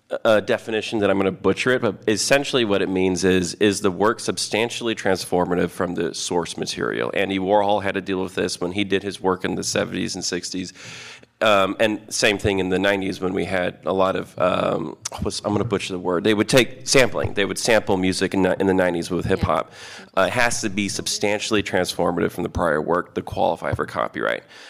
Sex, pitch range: male, 95-115 Hz